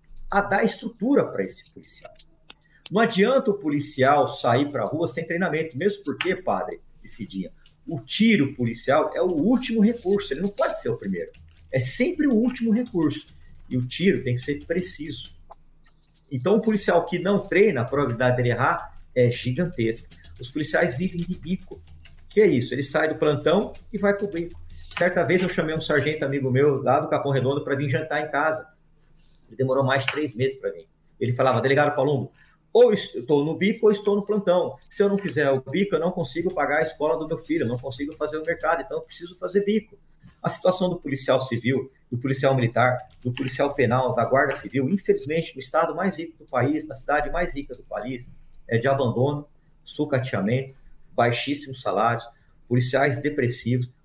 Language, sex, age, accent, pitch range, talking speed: Portuguese, male, 50-69, Brazilian, 125-175 Hz, 190 wpm